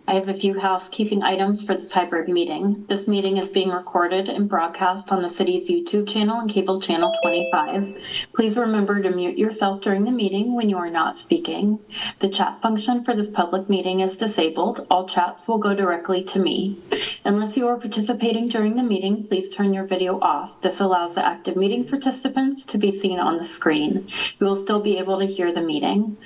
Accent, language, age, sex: American, English, 30-49, female